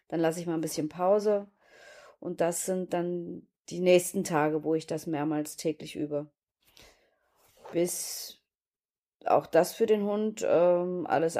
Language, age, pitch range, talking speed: German, 30-49, 170-215 Hz, 145 wpm